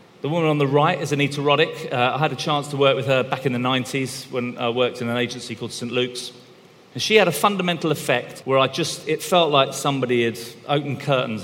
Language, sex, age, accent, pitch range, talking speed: English, male, 40-59, British, 120-145 Hz, 240 wpm